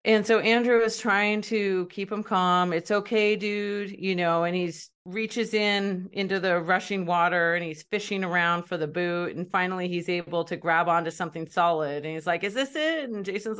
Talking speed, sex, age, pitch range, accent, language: 205 wpm, female, 30-49, 170-205 Hz, American, English